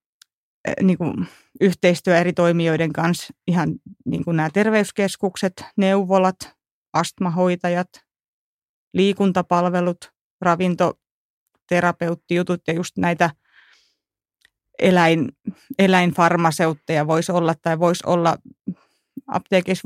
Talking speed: 75 wpm